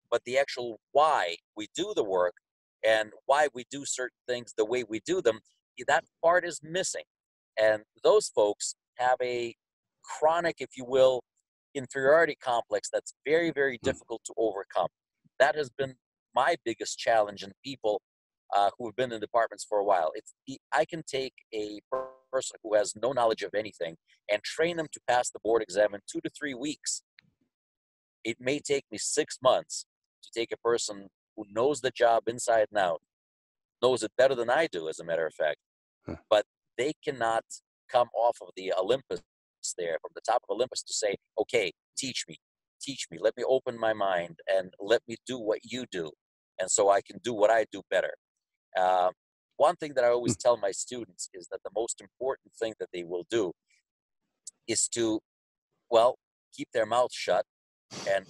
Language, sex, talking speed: English, male, 185 wpm